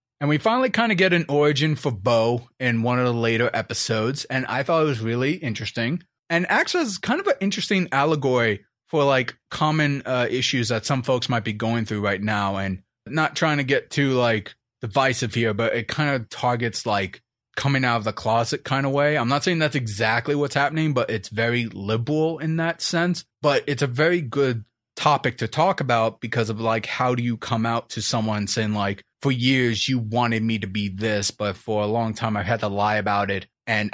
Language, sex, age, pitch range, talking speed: English, male, 30-49, 115-165 Hz, 215 wpm